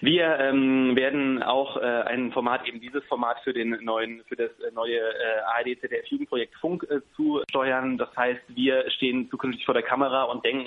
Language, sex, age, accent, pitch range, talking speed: German, male, 20-39, German, 115-140 Hz, 180 wpm